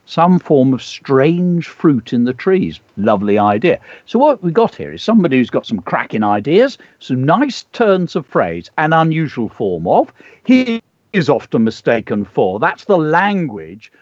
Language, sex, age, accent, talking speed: English, male, 50-69, British, 165 wpm